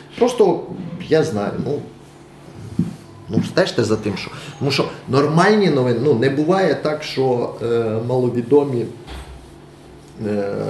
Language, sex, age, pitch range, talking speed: Ukrainian, male, 20-39, 110-140 Hz, 125 wpm